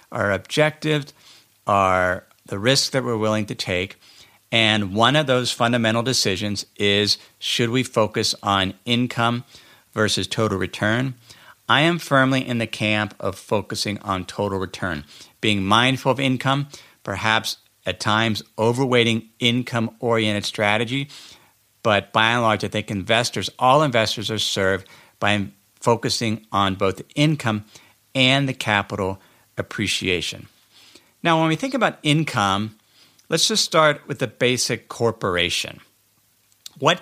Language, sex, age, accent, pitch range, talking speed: English, male, 50-69, American, 105-135 Hz, 130 wpm